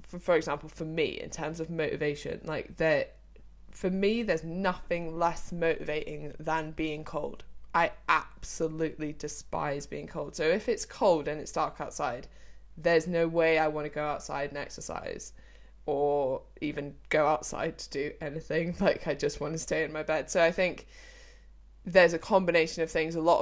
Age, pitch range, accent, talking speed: 20-39, 150-180 Hz, British, 175 wpm